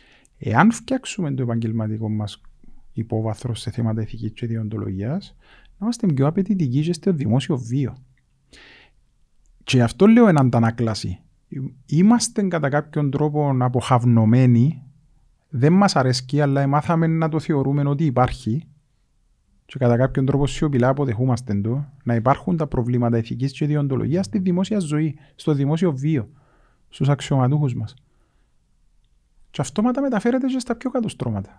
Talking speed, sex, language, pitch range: 130 wpm, male, Greek, 120-185 Hz